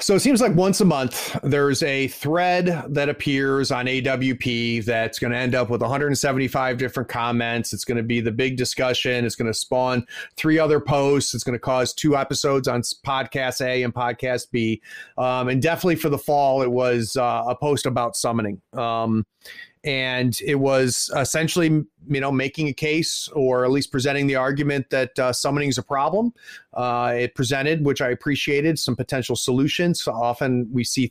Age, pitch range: 30-49, 125-145 Hz